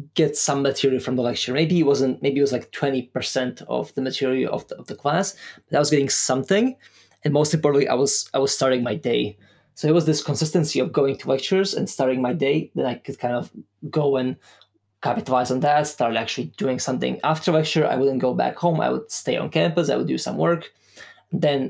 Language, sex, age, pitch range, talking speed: English, male, 20-39, 130-155 Hz, 225 wpm